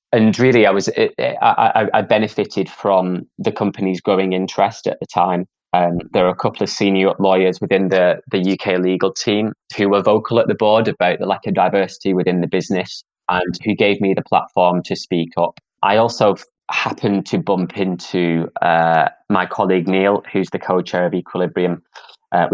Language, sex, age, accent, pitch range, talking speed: English, male, 20-39, British, 90-100 Hz, 180 wpm